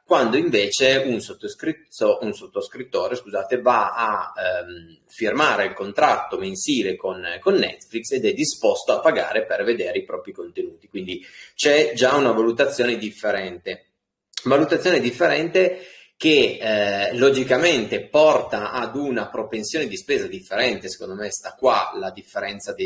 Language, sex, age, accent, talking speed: Italian, male, 30-49, native, 130 wpm